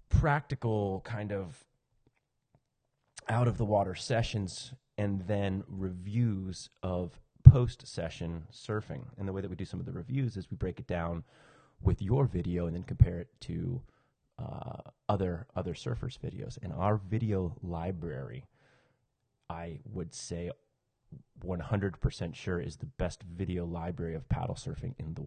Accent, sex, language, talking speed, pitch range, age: American, male, English, 140 wpm, 85-115 Hz, 30-49